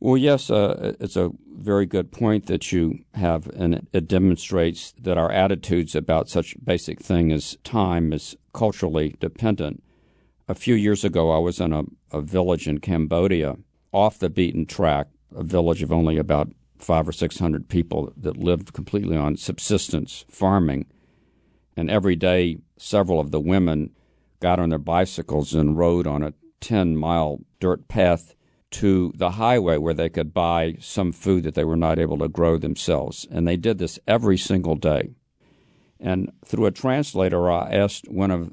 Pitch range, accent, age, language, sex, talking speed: 80-100 Hz, American, 50-69, English, male, 170 wpm